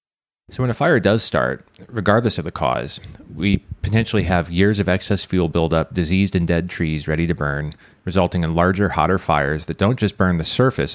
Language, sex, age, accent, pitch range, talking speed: English, male, 30-49, American, 85-100 Hz, 195 wpm